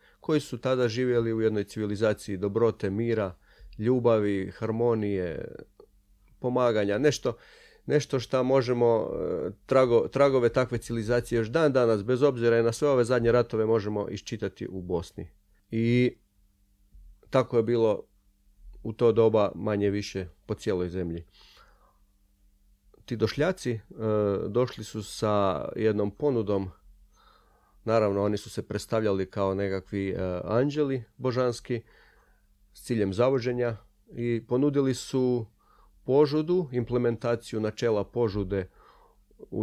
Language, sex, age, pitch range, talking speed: Croatian, male, 40-59, 100-125 Hz, 110 wpm